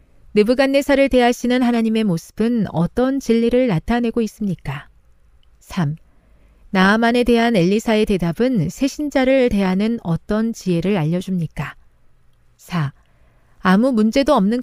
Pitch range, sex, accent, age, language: 165-235 Hz, female, native, 40-59, Korean